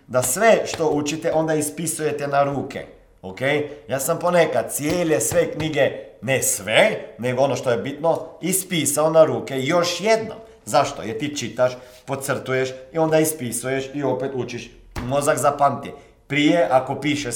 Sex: male